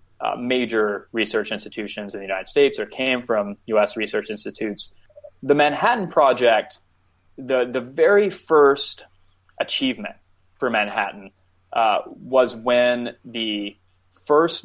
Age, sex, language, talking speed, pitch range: 20-39, male, English, 120 wpm, 100-130 Hz